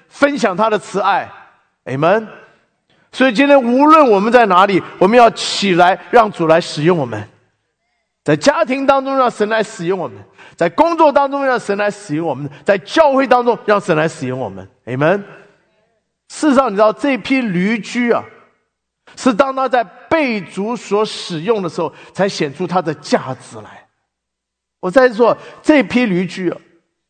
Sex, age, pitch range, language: male, 50-69, 145-230 Hz, English